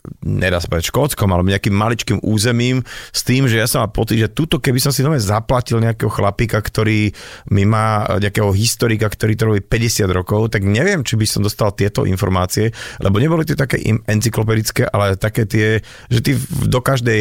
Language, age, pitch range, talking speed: Slovak, 30-49, 105-130 Hz, 175 wpm